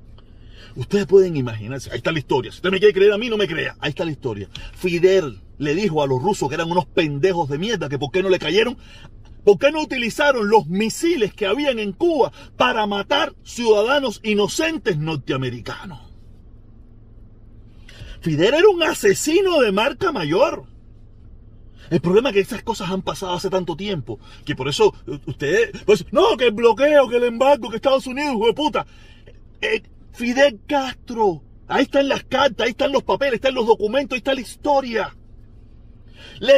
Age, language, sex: 40-59, Spanish, male